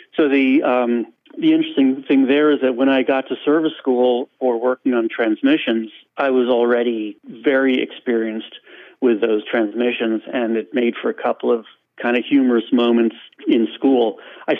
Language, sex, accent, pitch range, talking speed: English, male, American, 115-140 Hz, 170 wpm